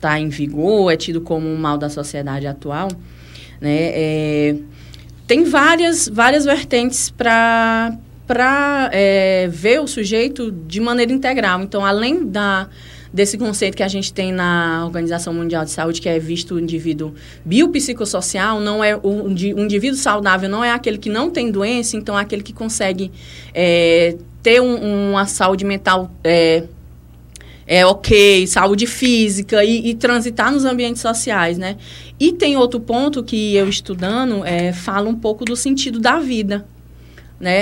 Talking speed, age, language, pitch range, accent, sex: 140 wpm, 20-39, Portuguese, 180-245 Hz, Brazilian, female